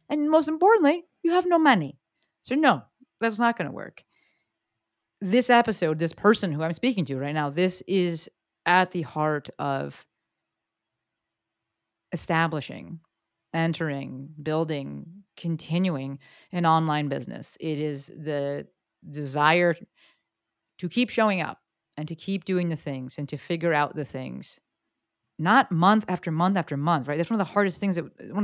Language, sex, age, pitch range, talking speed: English, female, 30-49, 150-195 Hz, 150 wpm